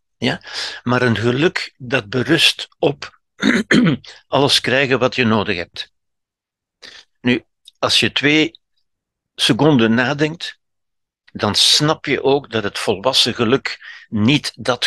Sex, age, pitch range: male, 60-79, 115-155 Hz